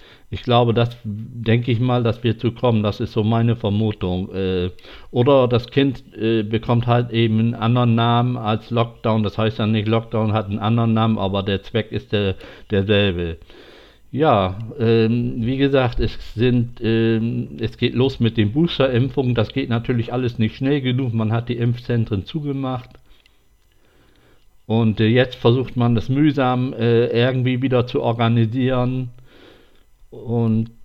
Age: 50-69